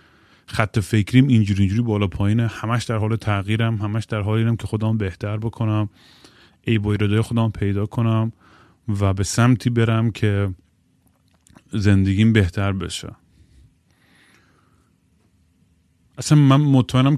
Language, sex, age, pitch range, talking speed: Persian, male, 30-49, 100-125 Hz, 110 wpm